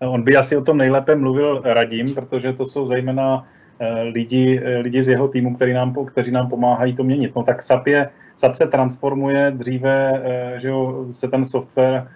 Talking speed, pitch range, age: 180 wpm, 120-130 Hz, 30-49